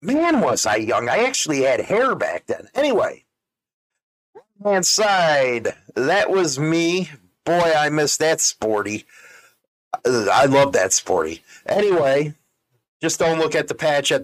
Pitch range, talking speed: 125-160 Hz, 130 wpm